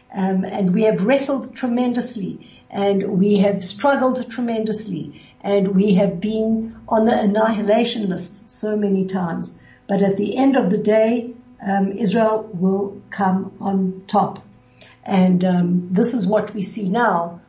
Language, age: English, 60-79